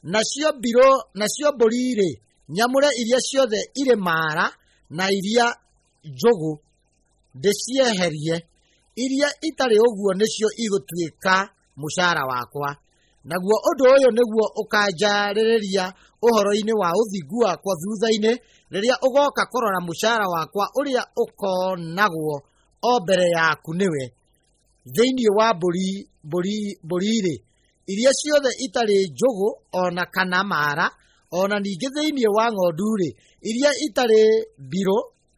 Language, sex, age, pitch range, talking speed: English, male, 30-49, 175-235 Hz, 110 wpm